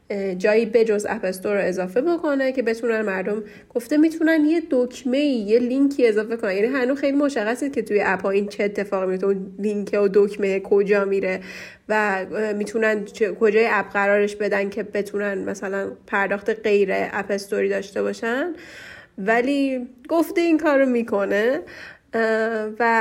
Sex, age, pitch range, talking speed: female, 10-29, 200-240 Hz, 140 wpm